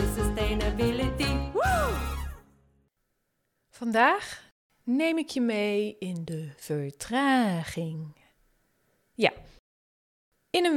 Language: Dutch